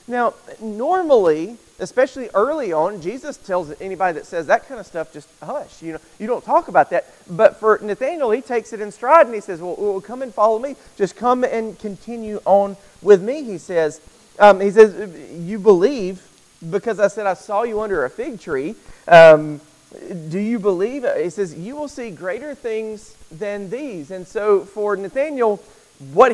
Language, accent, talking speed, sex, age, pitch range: English, American, 185 wpm, male, 40-59, 170-225 Hz